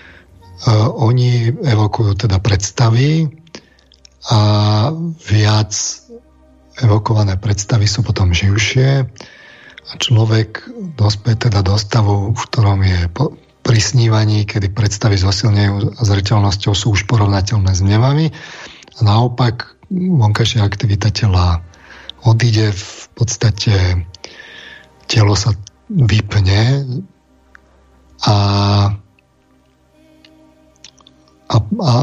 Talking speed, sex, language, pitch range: 80 wpm, male, Slovak, 100-120 Hz